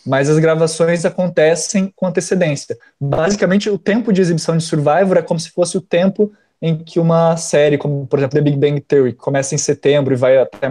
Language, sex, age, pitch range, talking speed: Portuguese, male, 20-39, 140-175 Hz, 200 wpm